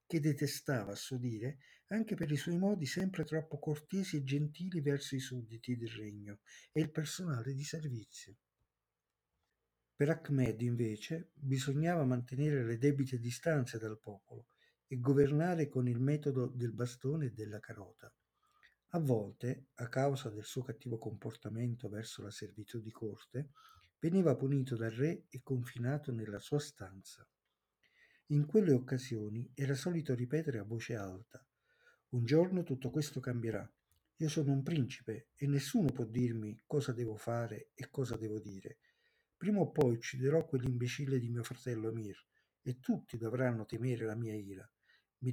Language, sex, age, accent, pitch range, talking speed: Italian, male, 50-69, native, 115-145 Hz, 150 wpm